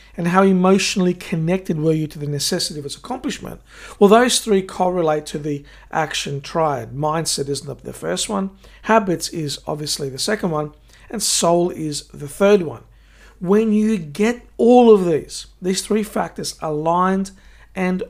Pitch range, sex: 155-205 Hz, male